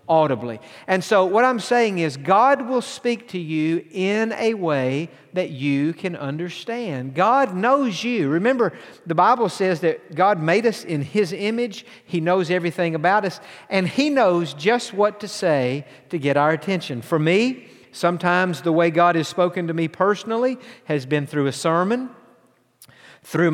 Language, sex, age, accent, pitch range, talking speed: English, male, 50-69, American, 155-190 Hz, 170 wpm